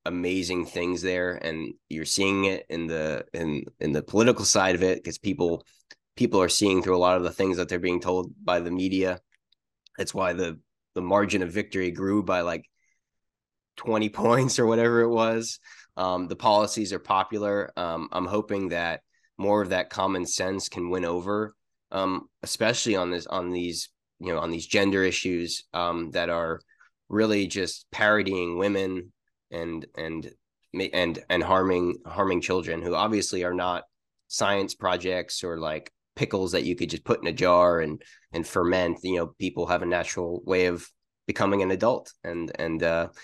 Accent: American